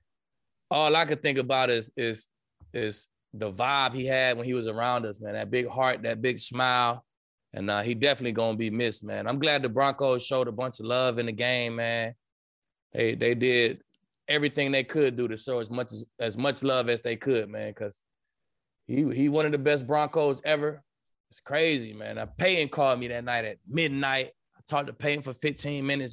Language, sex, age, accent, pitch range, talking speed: English, male, 20-39, American, 120-145 Hz, 210 wpm